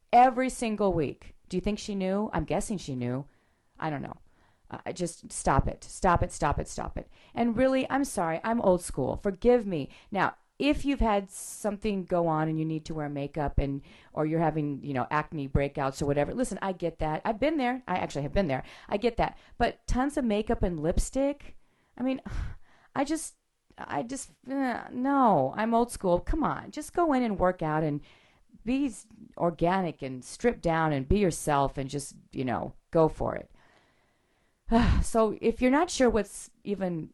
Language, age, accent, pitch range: English, 40-59, American, 160-245 Hz